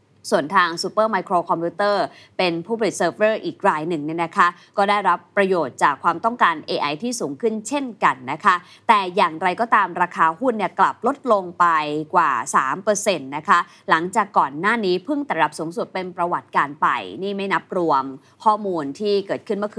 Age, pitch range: 20-39, 165-215 Hz